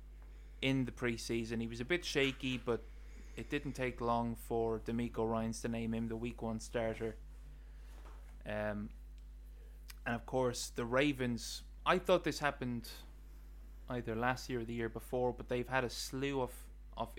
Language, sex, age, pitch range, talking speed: English, male, 20-39, 80-125 Hz, 165 wpm